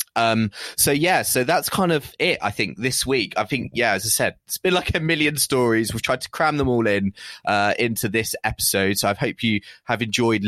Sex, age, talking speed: male, 20-39, 235 wpm